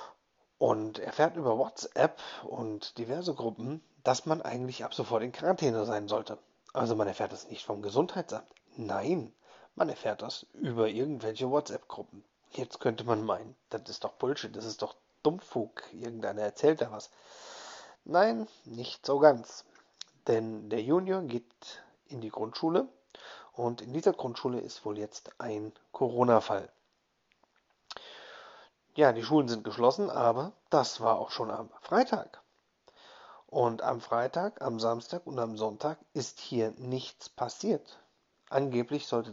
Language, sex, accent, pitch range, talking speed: German, male, German, 110-150 Hz, 140 wpm